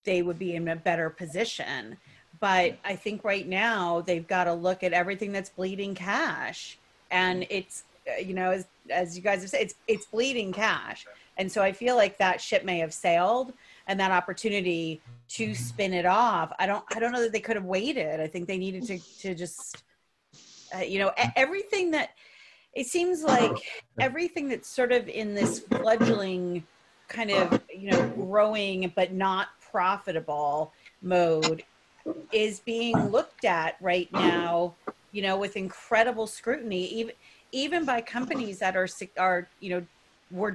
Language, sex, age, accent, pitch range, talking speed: English, female, 30-49, American, 180-230 Hz, 170 wpm